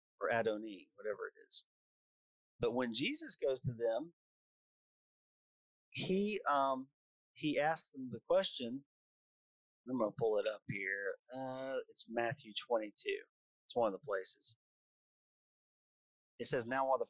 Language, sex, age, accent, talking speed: English, male, 40-59, American, 130 wpm